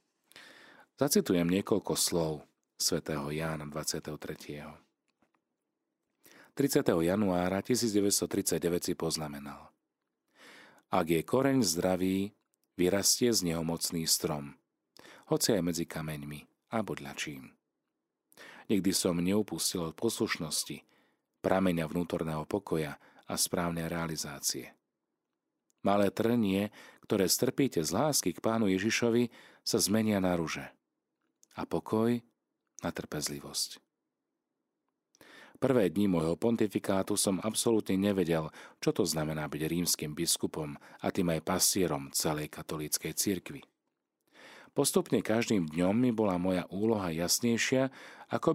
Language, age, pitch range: Slovak, 40-59, 80-115 Hz